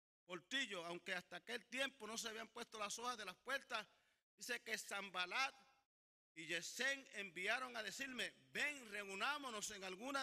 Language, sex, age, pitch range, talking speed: English, male, 50-69, 200-260 Hz, 145 wpm